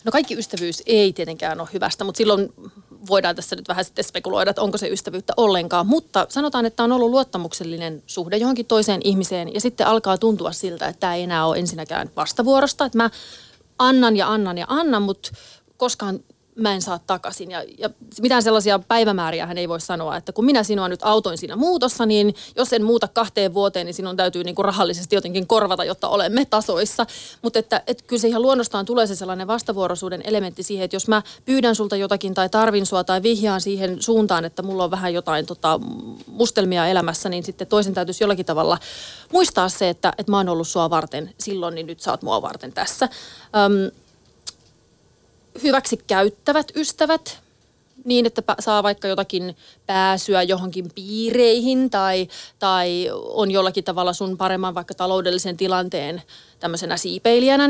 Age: 30-49